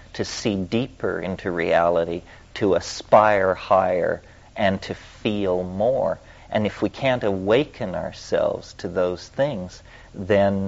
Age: 50-69